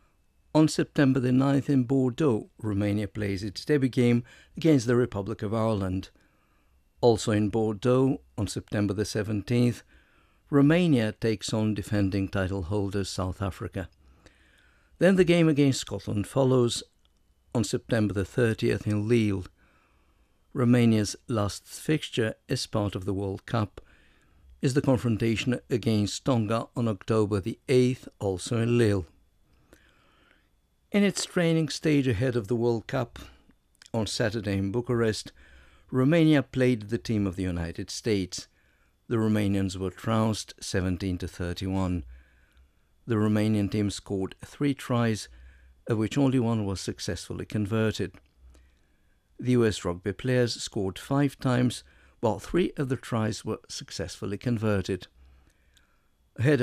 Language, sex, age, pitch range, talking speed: English, male, 60-79, 95-125 Hz, 130 wpm